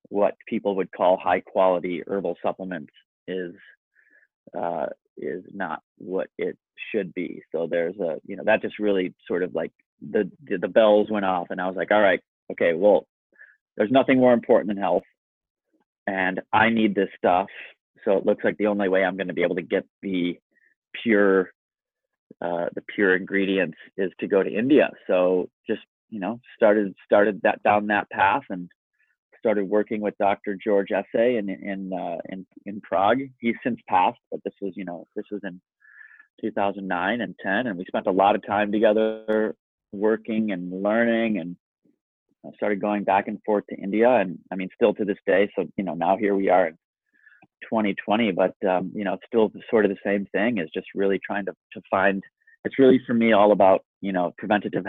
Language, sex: English, male